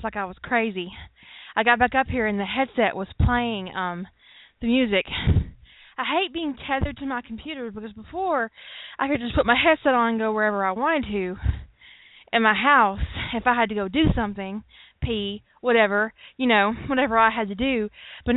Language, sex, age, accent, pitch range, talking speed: English, female, 20-39, American, 215-280 Hz, 195 wpm